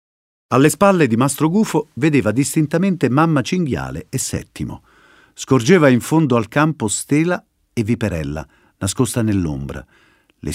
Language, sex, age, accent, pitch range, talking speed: Italian, male, 50-69, native, 90-140 Hz, 125 wpm